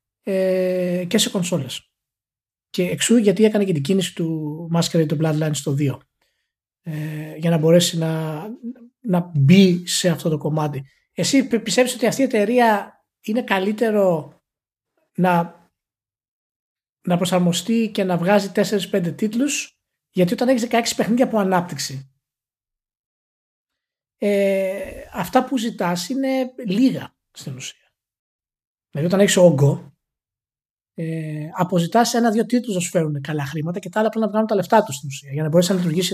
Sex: male